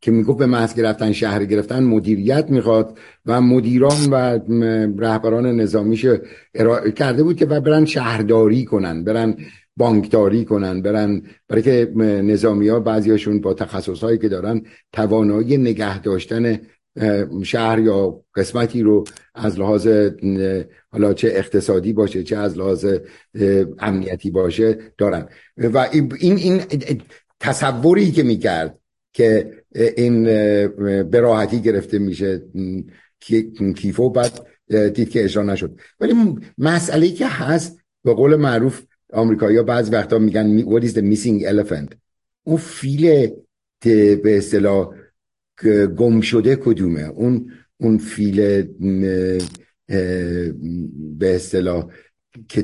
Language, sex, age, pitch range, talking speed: Persian, male, 60-79, 100-120 Hz, 110 wpm